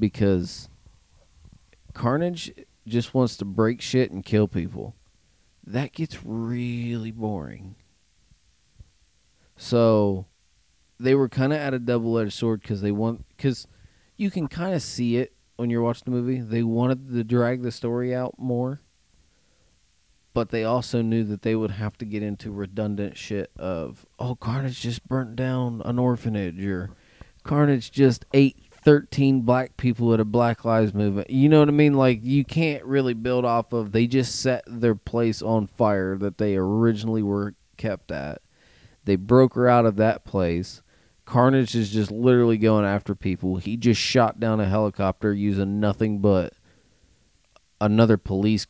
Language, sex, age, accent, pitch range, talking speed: English, male, 30-49, American, 100-125 Hz, 155 wpm